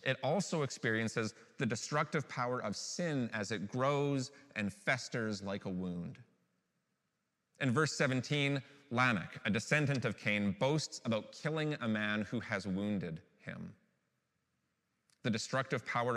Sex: male